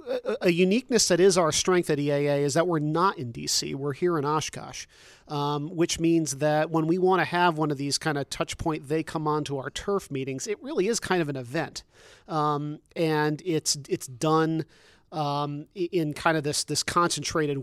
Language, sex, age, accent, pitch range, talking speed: English, male, 40-59, American, 145-165 Hz, 205 wpm